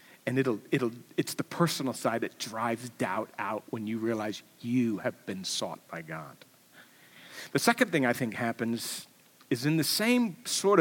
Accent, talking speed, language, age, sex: American, 170 wpm, English, 50-69, male